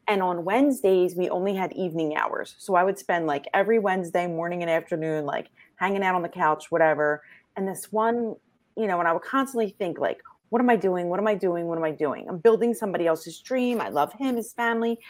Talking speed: 230 wpm